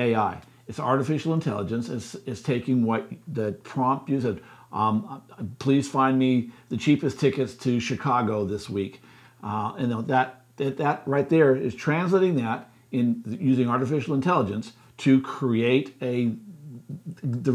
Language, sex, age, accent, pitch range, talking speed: English, male, 50-69, American, 120-150 Hz, 140 wpm